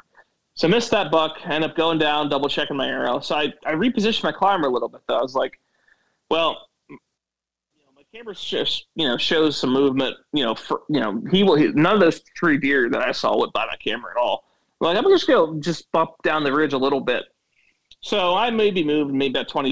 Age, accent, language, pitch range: 30-49, American, English, 130-190 Hz